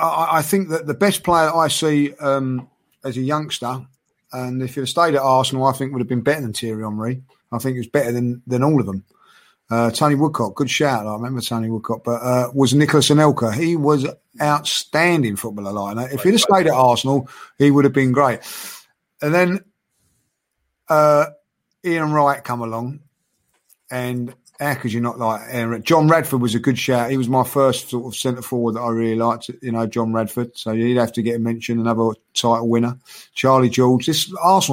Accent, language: British, English